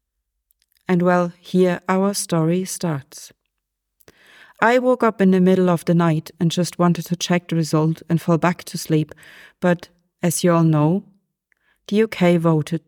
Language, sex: English, female